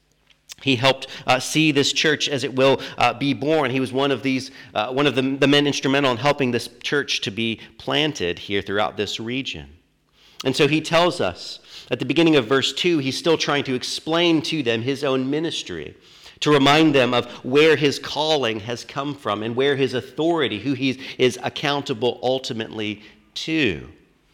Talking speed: 185 wpm